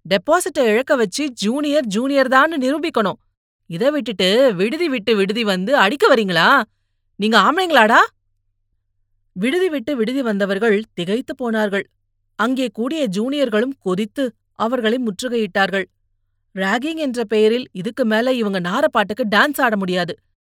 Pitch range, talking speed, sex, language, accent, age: 185-245 Hz, 115 wpm, female, Tamil, native, 30-49